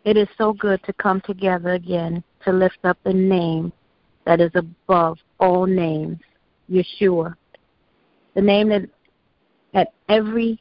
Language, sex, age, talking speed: English, female, 50-69, 115 wpm